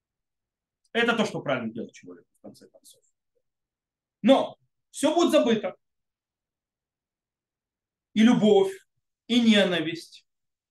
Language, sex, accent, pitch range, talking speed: Russian, male, native, 205-300 Hz, 90 wpm